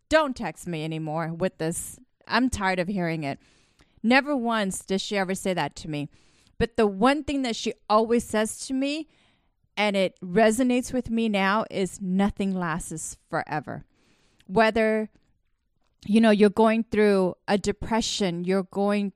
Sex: female